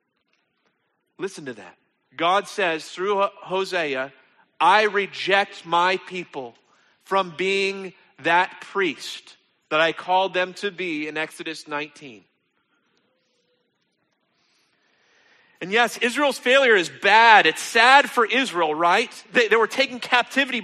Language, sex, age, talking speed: English, male, 40-59, 115 wpm